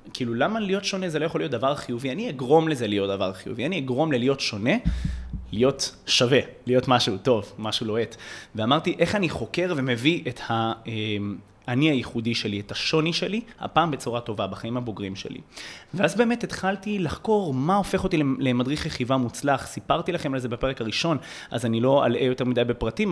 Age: 30-49